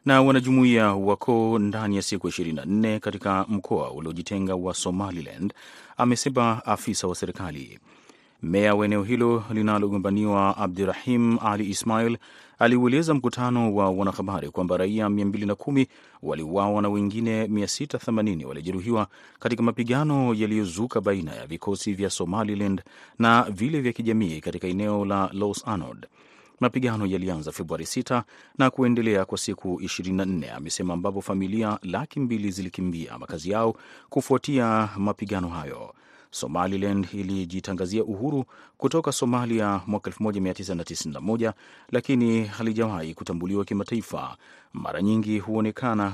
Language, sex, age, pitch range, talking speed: Swahili, male, 30-49, 95-115 Hz, 110 wpm